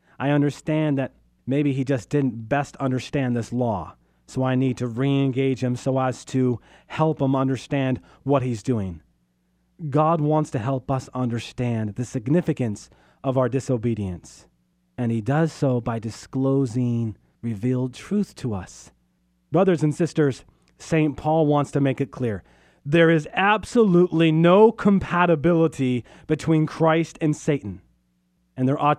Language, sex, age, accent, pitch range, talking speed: English, male, 40-59, American, 110-160 Hz, 145 wpm